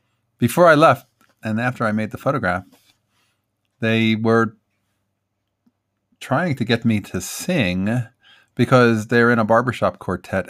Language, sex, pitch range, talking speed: English, male, 95-120 Hz, 130 wpm